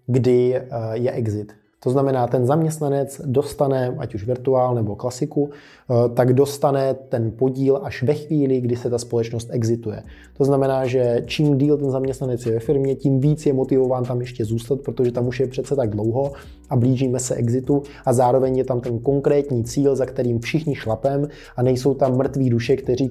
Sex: male